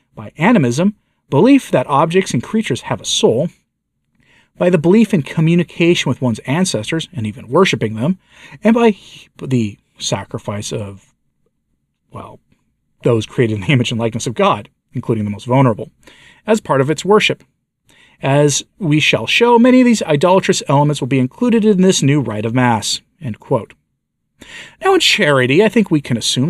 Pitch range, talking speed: 120-185 Hz, 170 wpm